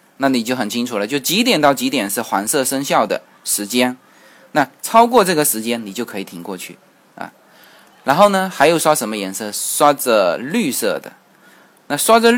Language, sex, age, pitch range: Chinese, male, 20-39, 110-170 Hz